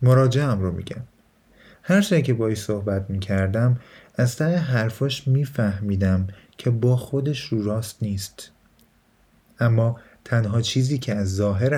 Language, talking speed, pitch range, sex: Persian, 130 wpm, 100-135 Hz, male